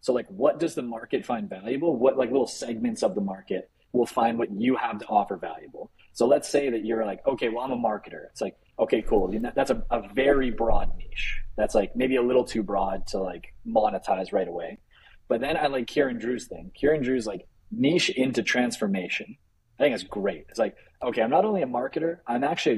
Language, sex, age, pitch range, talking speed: English, male, 30-49, 115-145 Hz, 220 wpm